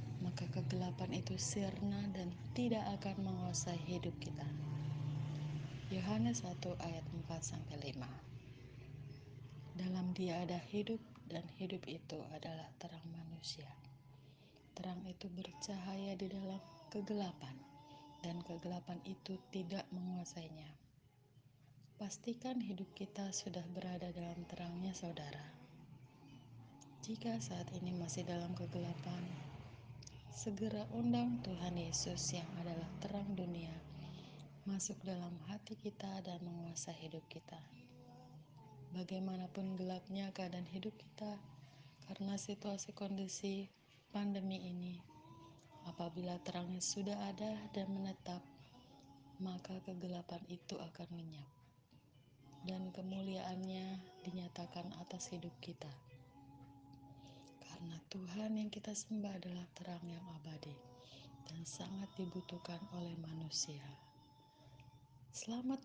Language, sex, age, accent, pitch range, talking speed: Indonesian, female, 30-49, native, 140-185 Hz, 100 wpm